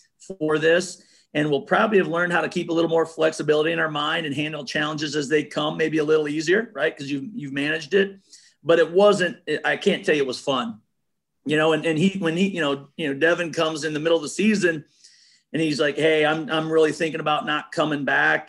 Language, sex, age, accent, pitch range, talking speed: English, male, 40-59, American, 150-170 Hz, 240 wpm